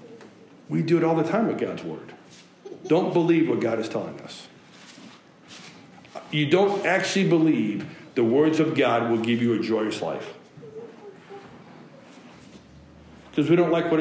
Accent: American